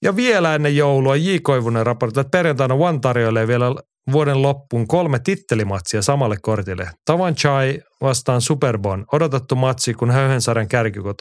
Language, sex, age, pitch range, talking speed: Finnish, male, 30-49, 110-140 Hz, 140 wpm